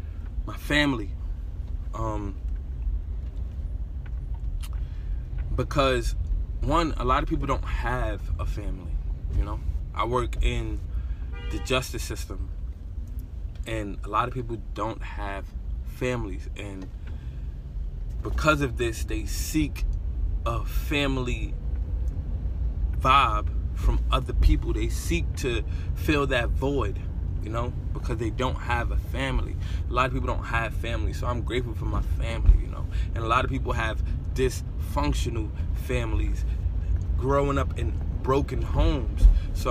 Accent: American